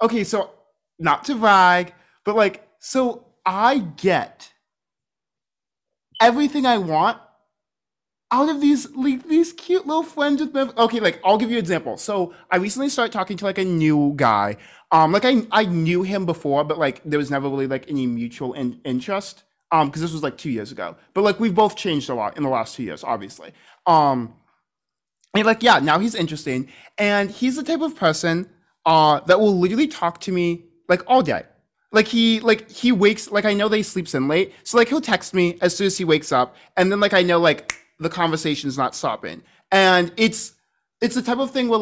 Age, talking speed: 20-39, 205 wpm